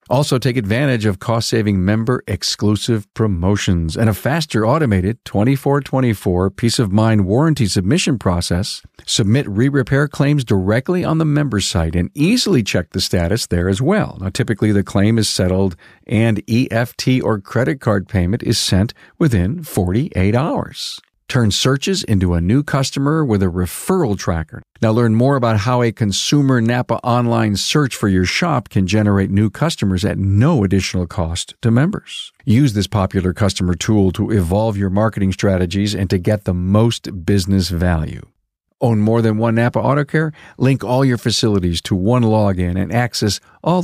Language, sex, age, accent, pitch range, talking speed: English, male, 50-69, American, 100-130 Hz, 165 wpm